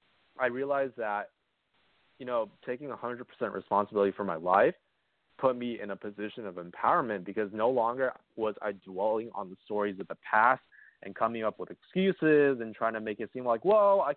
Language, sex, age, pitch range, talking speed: English, male, 20-39, 100-120 Hz, 185 wpm